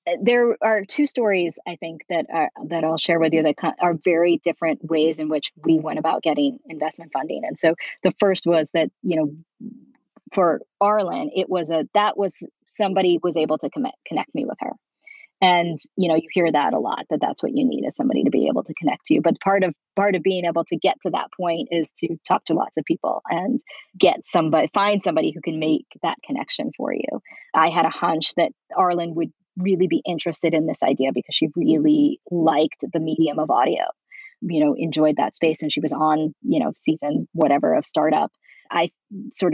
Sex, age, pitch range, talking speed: female, 20-39, 160-200 Hz, 215 wpm